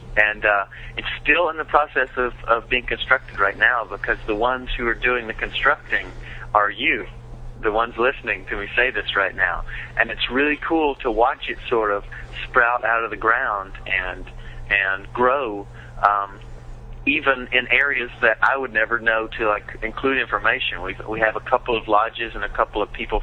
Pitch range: 105-125 Hz